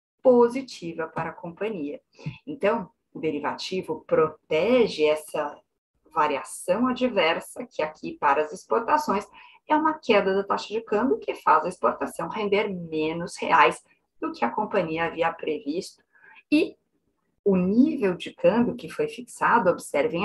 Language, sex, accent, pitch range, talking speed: Portuguese, female, Brazilian, 165-240 Hz, 135 wpm